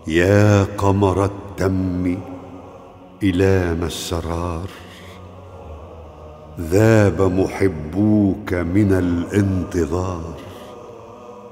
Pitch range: 85-100 Hz